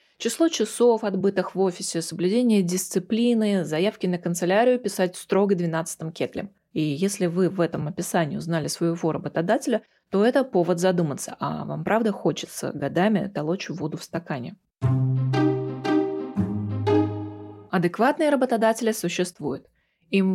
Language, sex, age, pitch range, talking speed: Russian, female, 20-39, 165-205 Hz, 120 wpm